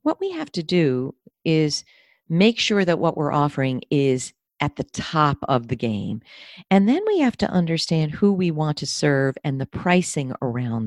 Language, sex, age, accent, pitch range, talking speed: English, female, 50-69, American, 120-165 Hz, 190 wpm